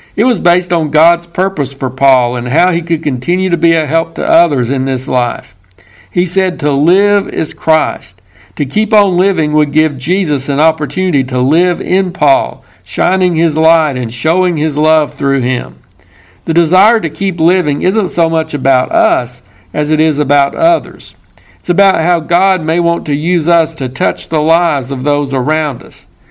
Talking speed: 185 wpm